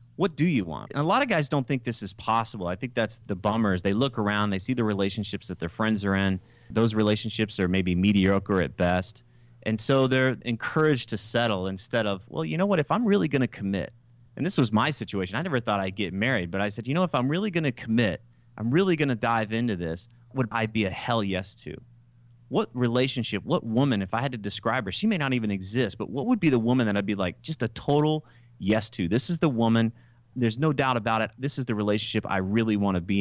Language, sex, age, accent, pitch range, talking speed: English, male, 30-49, American, 100-125 Hz, 250 wpm